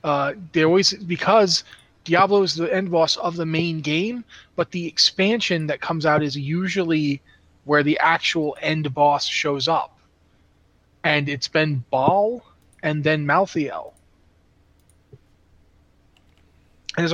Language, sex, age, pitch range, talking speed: English, male, 30-49, 140-175 Hz, 125 wpm